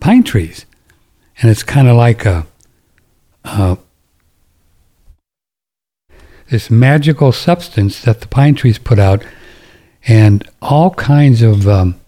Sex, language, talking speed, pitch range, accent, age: male, English, 115 wpm, 100-130 Hz, American, 60-79